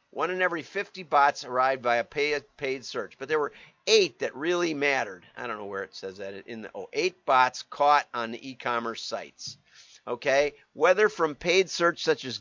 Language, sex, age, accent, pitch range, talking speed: English, male, 50-69, American, 125-175 Hz, 195 wpm